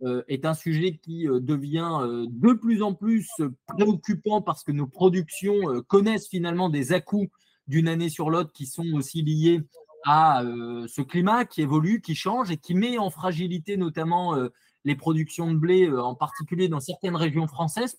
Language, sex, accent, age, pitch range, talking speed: French, male, French, 20-39, 150-195 Hz, 165 wpm